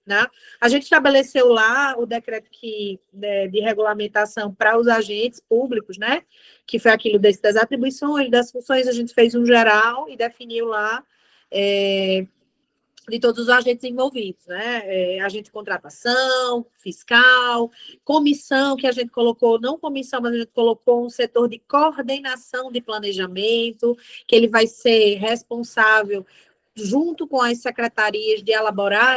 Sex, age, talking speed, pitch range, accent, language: female, 20-39, 140 wpm, 225-285 Hz, Brazilian, Portuguese